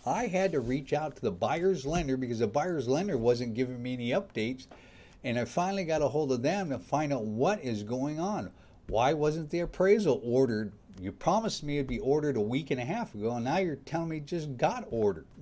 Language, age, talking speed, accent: English, 50-69, 235 wpm, American